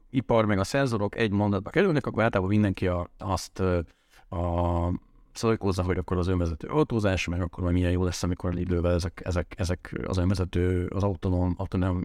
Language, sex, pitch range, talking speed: Hungarian, male, 90-105 Hz, 175 wpm